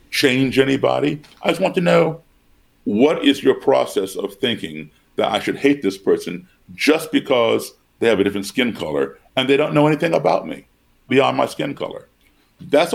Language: English